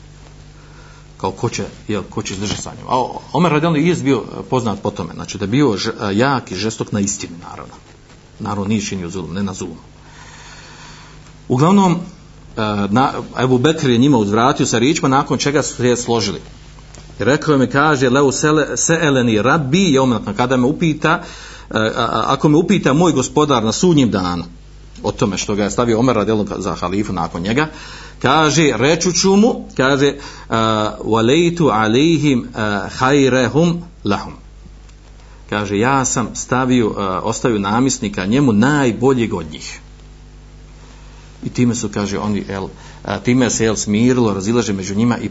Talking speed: 160 wpm